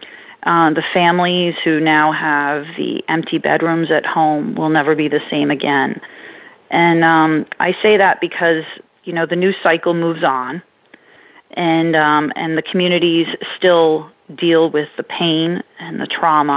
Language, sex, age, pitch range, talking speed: English, female, 30-49, 160-185 Hz, 155 wpm